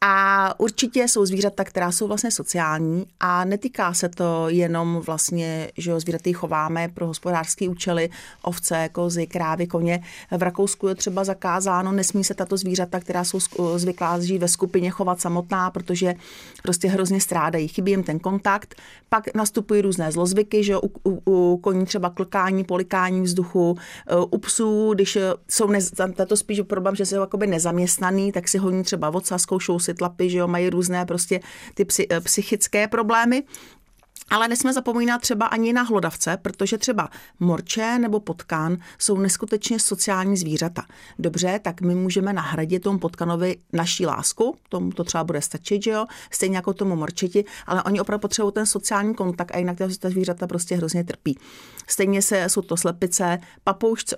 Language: Czech